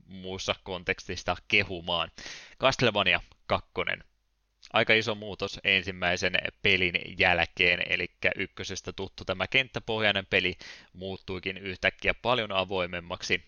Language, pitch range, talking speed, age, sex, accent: Finnish, 90-95 Hz, 95 wpm, 20-39, male, native